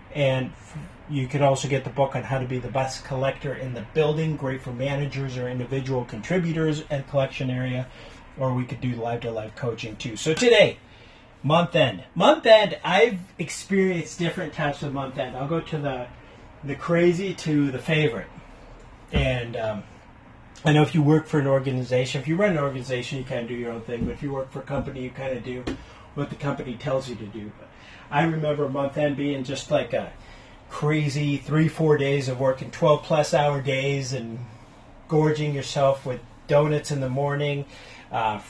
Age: 30-49